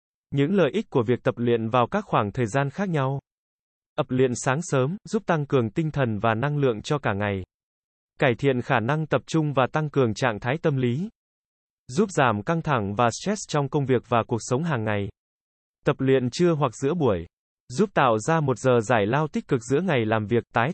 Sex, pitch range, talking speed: male, 115-150 Hz, 220 wpm